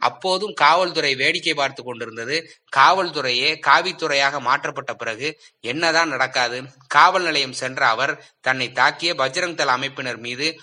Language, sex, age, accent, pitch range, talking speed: Tamil, male, 20-39, native, 130-165 Hz, 120 wpm